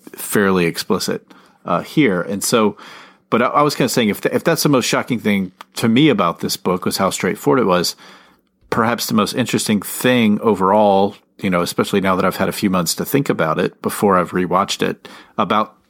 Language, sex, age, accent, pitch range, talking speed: English, male, 40-59, American, 90-105 Hz, 210 wpm